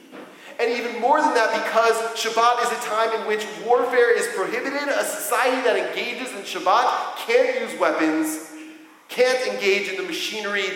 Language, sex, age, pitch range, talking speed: English, male, 40-59, 175-280 Hz, 160 wpm